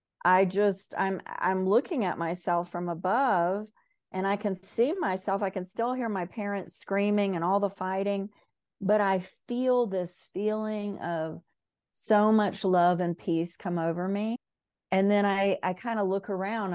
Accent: American